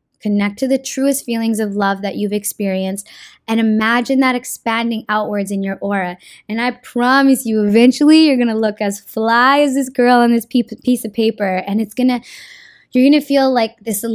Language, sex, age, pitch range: English, female, 10-29, 205-245 Hz